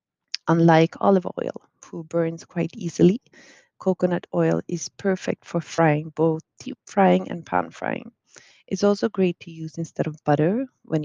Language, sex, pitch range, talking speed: English, female, 155-190 Hz, 150 wpm